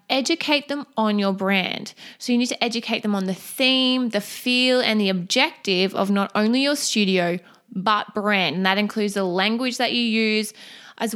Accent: Australian